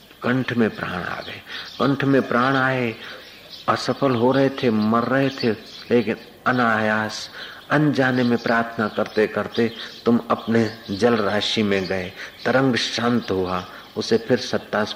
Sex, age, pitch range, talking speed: male, 50-69, 105-125 Hz, 135 wpm